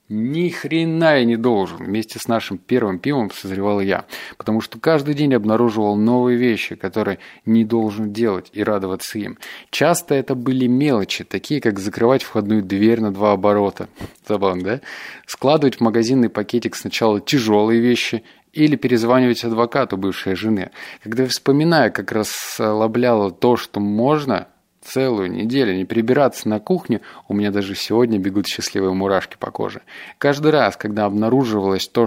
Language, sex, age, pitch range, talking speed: Russian, male, 20-39, 105-125 Hz, 150 wpm